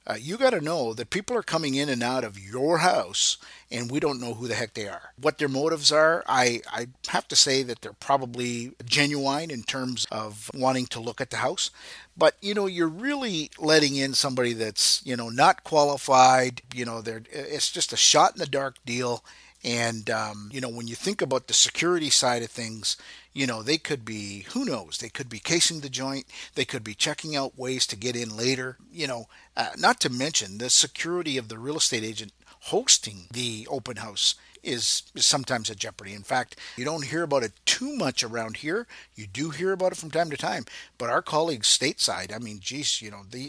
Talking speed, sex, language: 215 wpm, male, English